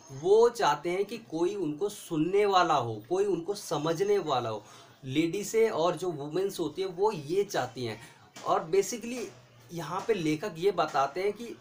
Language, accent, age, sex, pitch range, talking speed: Hindi, native, 30-49, male, 170-235 Hz, 175 wpm